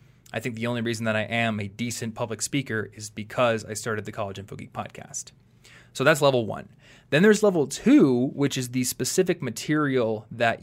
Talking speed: 200 wpm